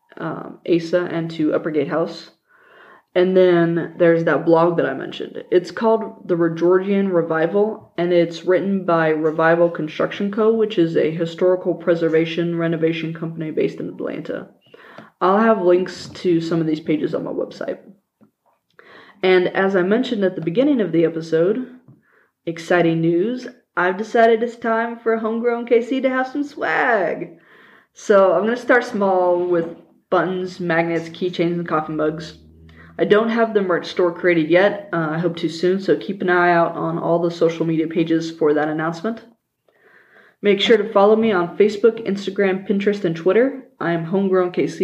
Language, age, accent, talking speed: English, 20-39, American, 170 wpm